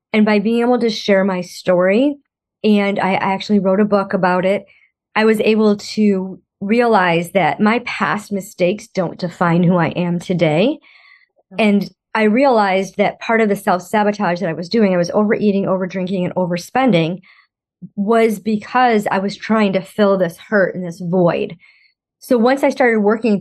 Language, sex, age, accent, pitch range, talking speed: English, male, 30-49, American, 185-220 Hz, 170 wpm